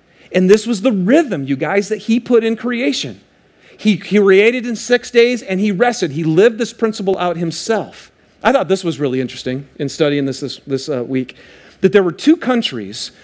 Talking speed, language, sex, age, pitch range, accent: 200 wpm, English, male, 40-59, 190-255 Hz, American